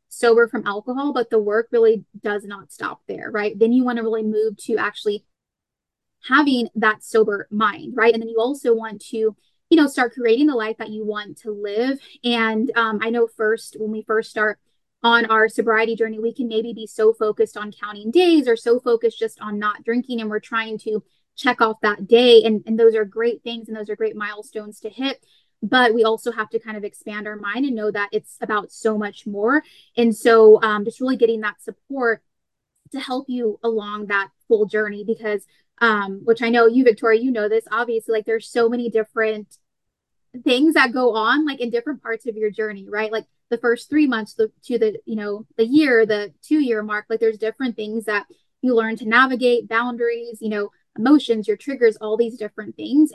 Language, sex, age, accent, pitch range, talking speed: English, female, 20-39, American, 215-240 Hz, 210 wpm